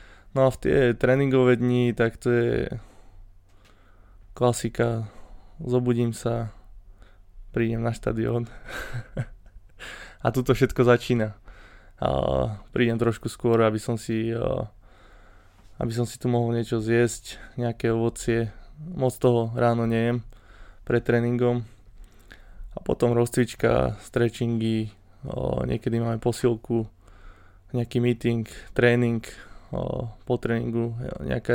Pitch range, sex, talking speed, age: 100-120 Hz, male, 105 wpm, 20-39